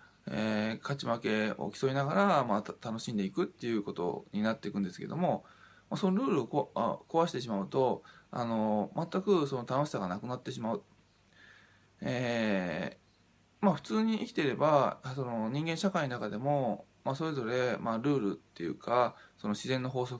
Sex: male